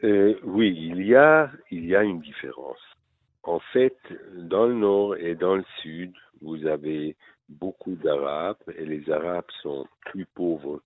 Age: 60-79